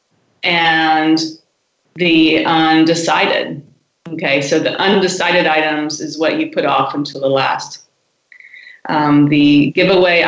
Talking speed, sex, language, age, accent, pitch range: 110 wpm, female, English, 30-49, American, 155-180 Hz